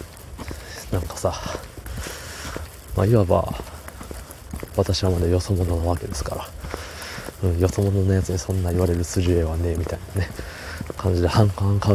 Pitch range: 80-100 Hz